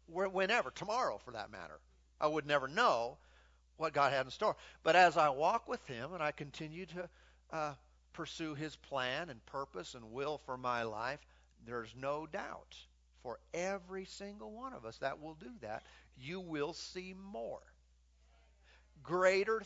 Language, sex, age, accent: English, male, 50-69, American